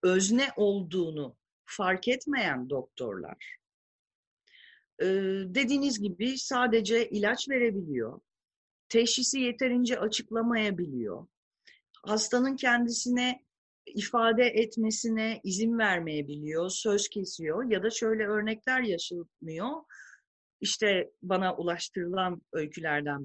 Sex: female